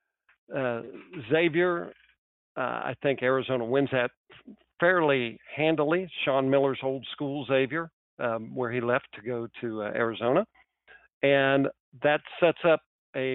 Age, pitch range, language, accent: 50-69, 130-160 Hz, English, American